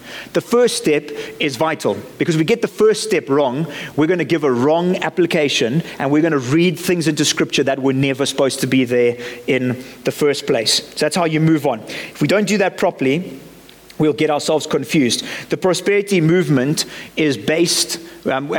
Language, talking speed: English, 195 wpm